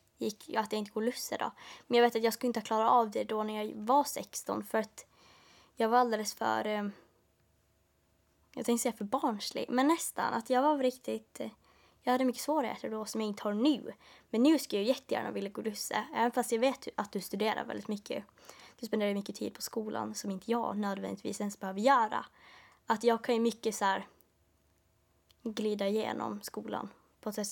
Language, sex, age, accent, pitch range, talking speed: Swedish, female, 20-39, Norwegian, 210-250 Hz, 205 wpm